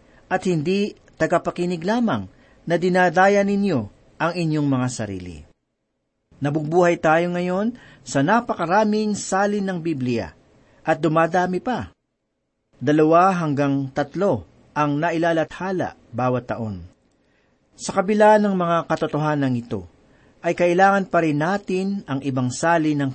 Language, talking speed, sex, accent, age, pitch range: Filipino, 115 wpm, male, native, 50-69, 135-185 Hz